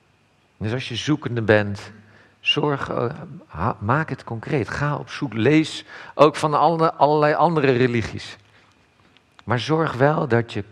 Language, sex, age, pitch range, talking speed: Dutch, male, 50-69, 95-125 Hz, 135 wpm